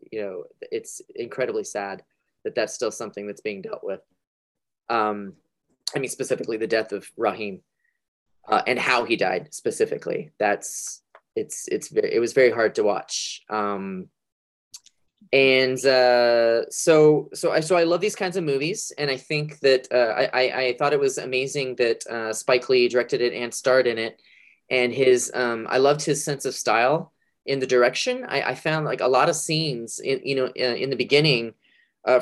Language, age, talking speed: English, 20-39, 185 wpm